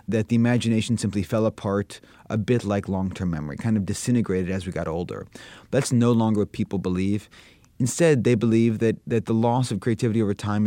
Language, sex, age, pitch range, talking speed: English, male, 30-49, 100-120 Hz, 195 wpm